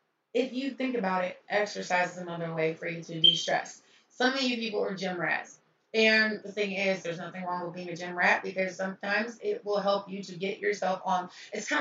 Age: 30-49